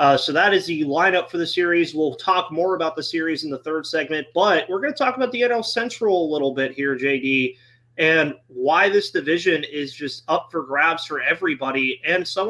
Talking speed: 220 wpm